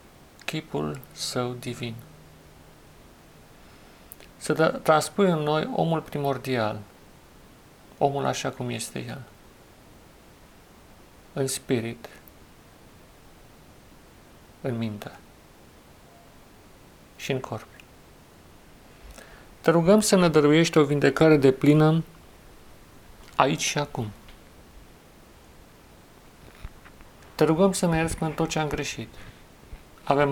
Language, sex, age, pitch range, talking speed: Romanian, male, 50-69, 115-145 Hz, 85 wpm